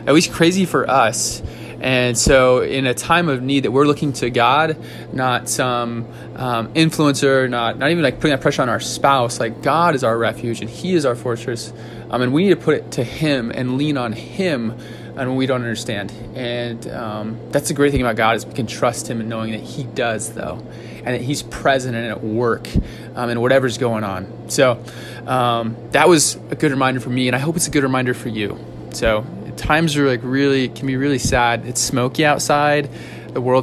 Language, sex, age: English, male, 20-39